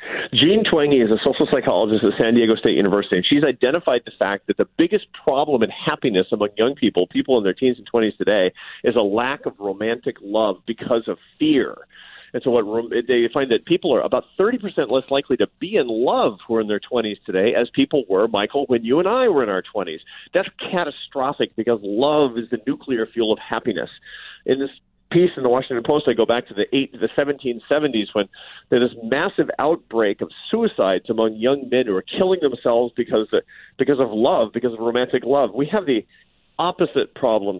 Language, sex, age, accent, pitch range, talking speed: English, male, 40-59, American, 110-150 Hz, 205 wpm